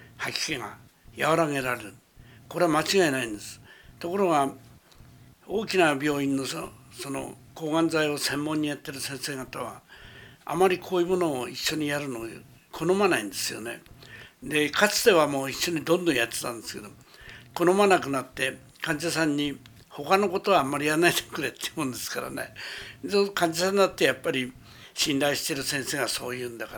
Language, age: Japanese, 60-79